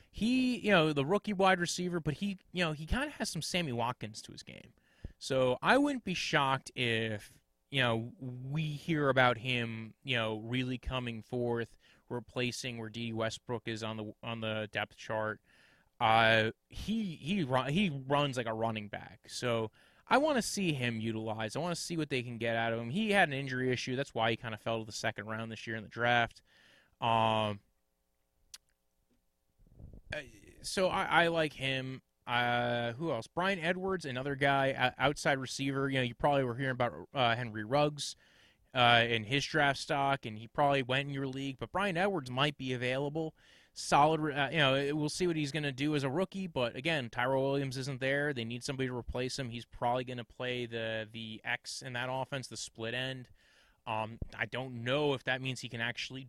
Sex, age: male, 20-39